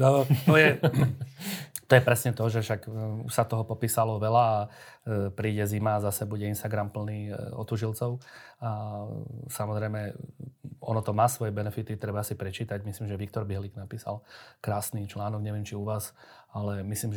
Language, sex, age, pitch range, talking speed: Slovak, male, 30-49, 105-115 Hz, 155 wpm